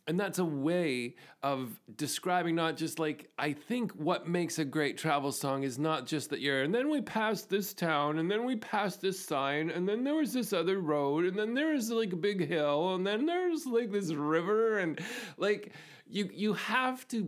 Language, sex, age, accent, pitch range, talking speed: English, male, 40-59, American, 145-185 Hz, 210 wpm